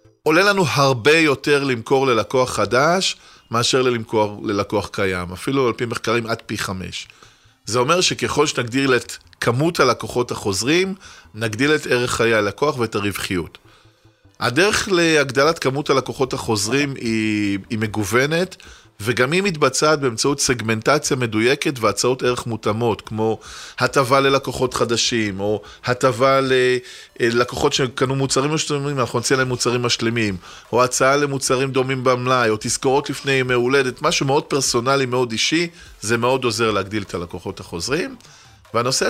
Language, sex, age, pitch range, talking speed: Hebrew, male, 20-39, 115-145 Hz, 135 wpm